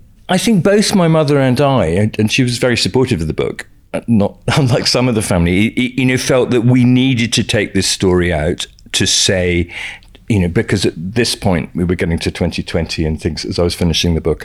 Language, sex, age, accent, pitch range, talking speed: English, male, 50-69, British, 85-120 Hz, 220 wpm